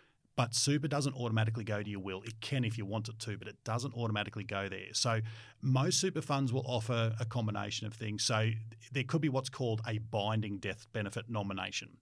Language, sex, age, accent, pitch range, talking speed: English, male, 30-49, Australian, 100-120 Hz, 210 wpm